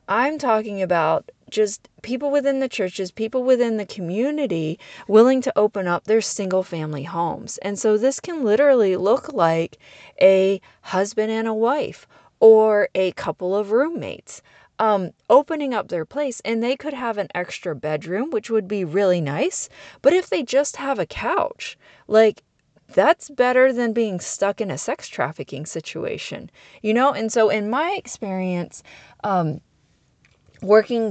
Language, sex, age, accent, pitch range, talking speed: English, female, 30-49, American, 185-245 Hz, 155 wpm